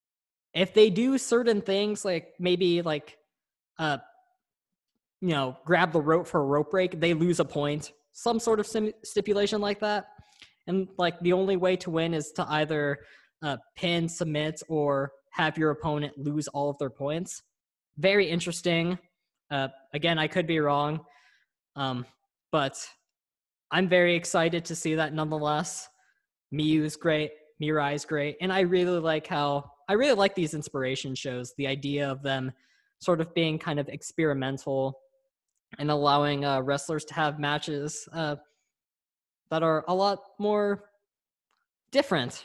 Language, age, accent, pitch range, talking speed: English, 10-29, American, 145-190 Hz, 150 wpm